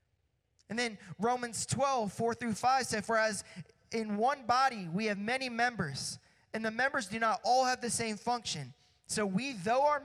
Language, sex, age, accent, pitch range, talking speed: English, male, 20-39, American, 185-235 Hz, 185 wpm